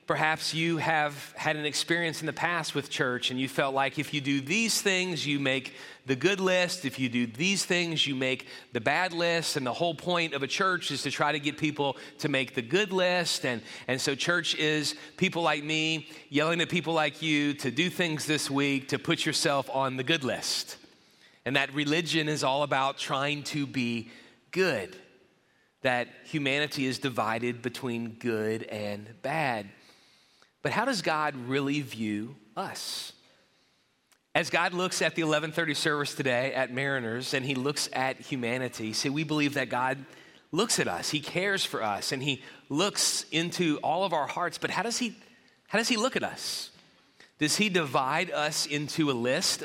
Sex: male